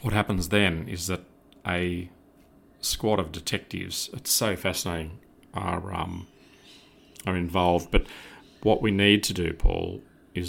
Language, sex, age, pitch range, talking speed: English, male, 40-59, 90-110 Hz, 135 wpm